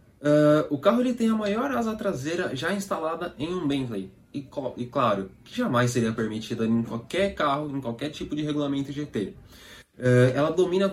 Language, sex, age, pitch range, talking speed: Portuguese, male, 20-39, 120-175 Hz, 165 wpm